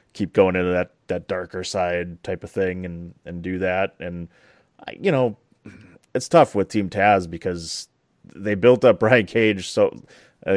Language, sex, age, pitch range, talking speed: English, male, 30-49, 90-110 Hz, 175 wpm